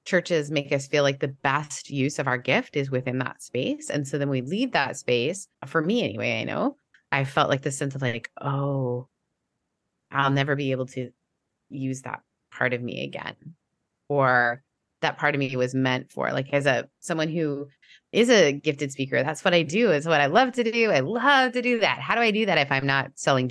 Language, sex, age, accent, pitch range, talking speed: English, female, 20-39, American, 130-165 Hz, 220 wpm